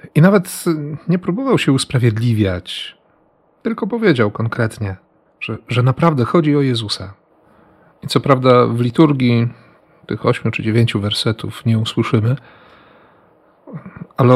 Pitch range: 110-145 Hz